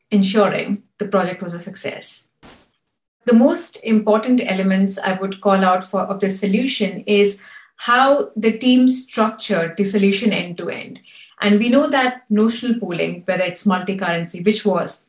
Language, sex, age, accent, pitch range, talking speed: English, female, 30-49, Indian, 190-225 Hz, 145 wpm